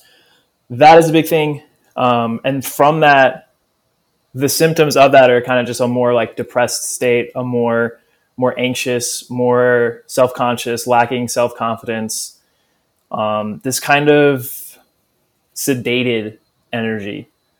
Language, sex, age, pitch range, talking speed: English, male, 20-39, 120-140 Hz, 125 wpm